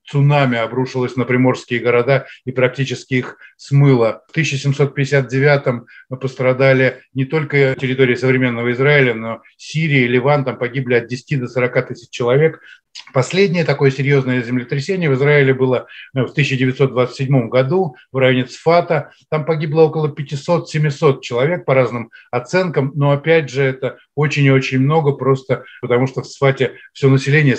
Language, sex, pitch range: Russian, male, 125-150 Hz